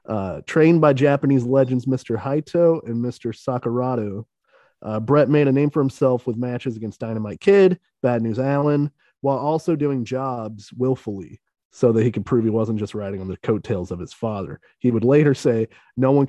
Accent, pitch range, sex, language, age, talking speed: American, 110-140 Hz, male, English, 30-49, 190 wpm